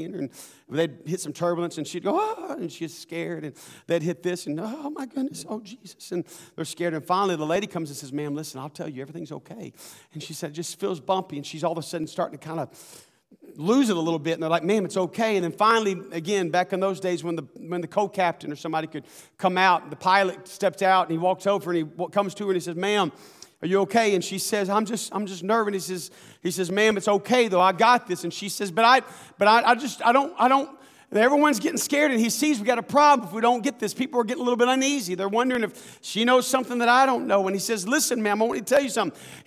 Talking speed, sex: 275 wpm, male